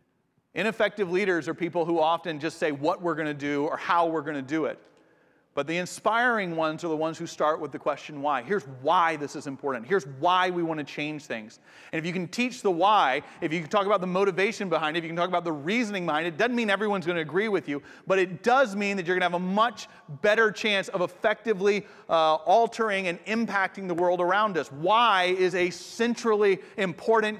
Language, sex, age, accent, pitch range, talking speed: English, male, 40-59, American, 165-215 Hz, 235 wpm